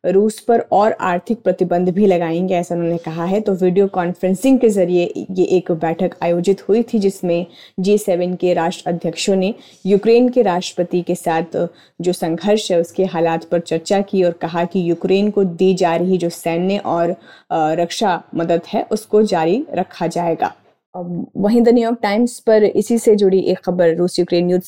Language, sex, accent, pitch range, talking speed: Hindi, female, native, 175-200 Hz, 175 wpm